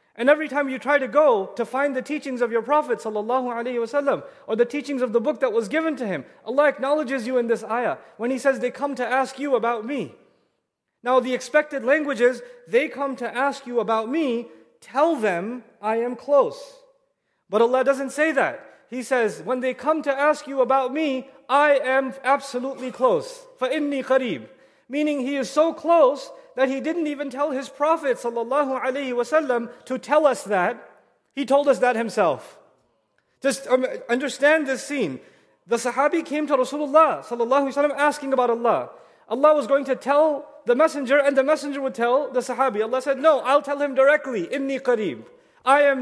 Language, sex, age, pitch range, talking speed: English, male, 30-49, 250-295 Hz, 180 wpm